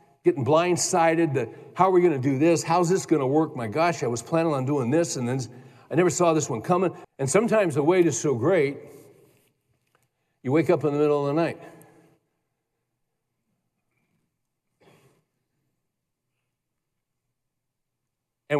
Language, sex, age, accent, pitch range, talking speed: English, male, 60-79, American, 125-165 Hz, 155 wpm